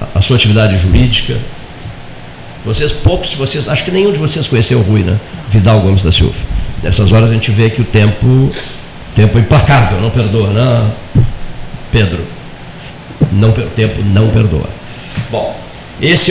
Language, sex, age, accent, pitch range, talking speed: Portuguese, male, 50-69, Brazilian, 105-140 Hz, 155 wpm